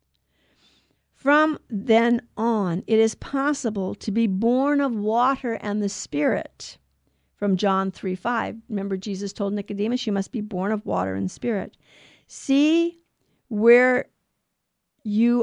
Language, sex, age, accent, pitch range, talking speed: English, female, 50-69, American, 185-235 Hz, 130 wpm